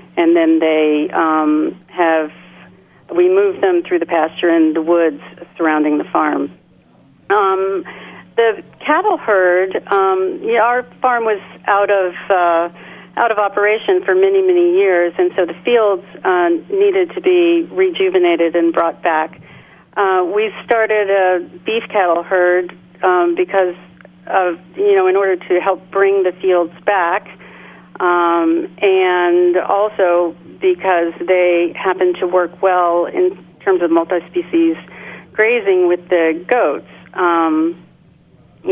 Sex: female